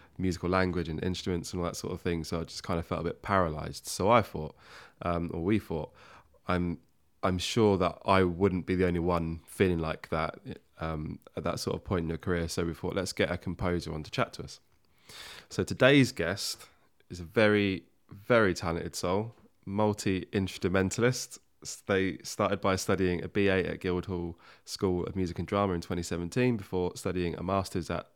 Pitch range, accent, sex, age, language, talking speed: 85-100 Hz, British, male, 20-39, English, 190 wpm